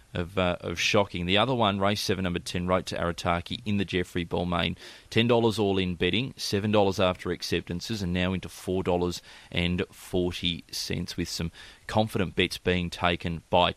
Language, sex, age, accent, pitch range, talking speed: English, male, 30-49, Australian, 90-105 Hz, 155 wpm